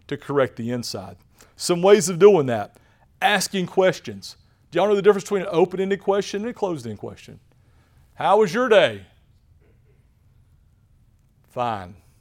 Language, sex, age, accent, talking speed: English, male, 40-59, American, 145 wpm